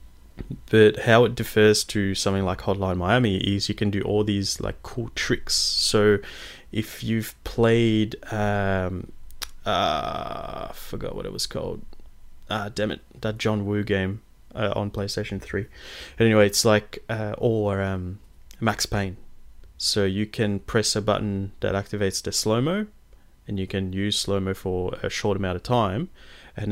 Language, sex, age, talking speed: English, male, 20-39, 160 wpm